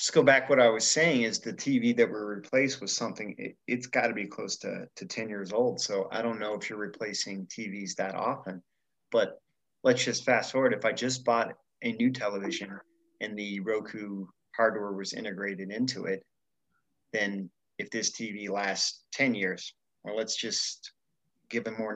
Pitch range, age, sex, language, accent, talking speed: 100-115 Hz, 30-49, male, English, American, 185 wpm